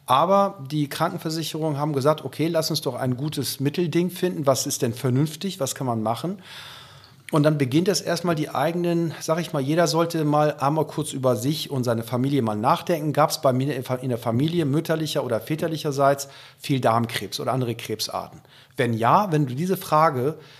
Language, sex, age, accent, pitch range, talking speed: German, male, 40-59, German, 125-160 Hz, 185 wpm